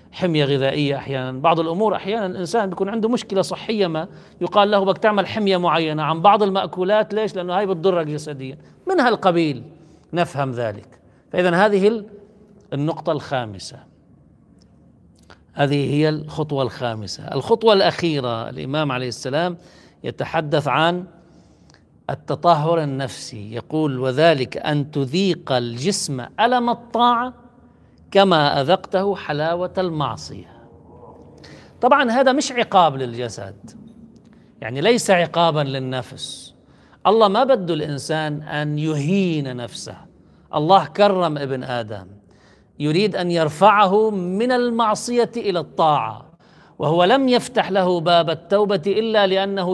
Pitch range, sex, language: 145-200 Hz, male, Arabic